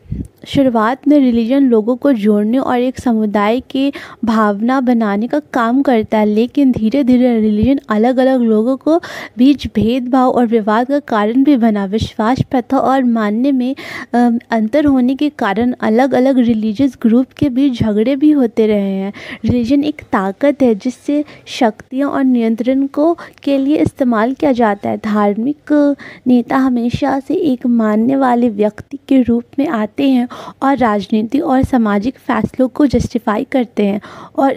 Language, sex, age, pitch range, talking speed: Hindi, female, 20-39, 230-275 Hz, 155 wpm